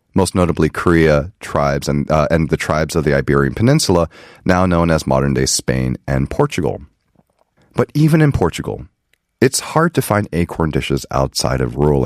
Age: 30-49